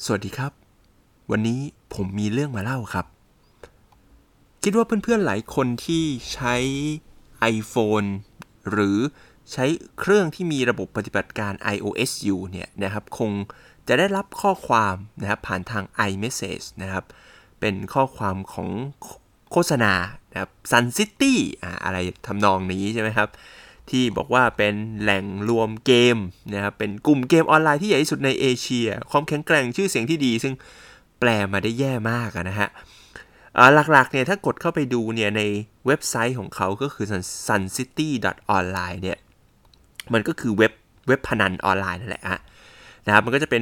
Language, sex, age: Thai, male, 20-39